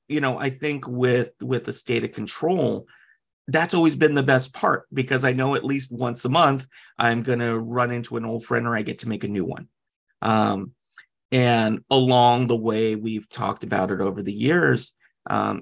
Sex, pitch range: male, 110-135 Hz